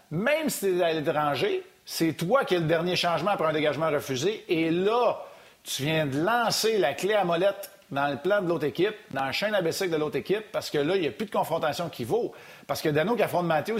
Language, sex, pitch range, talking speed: French, male, 145-185 Hz, 250 wpm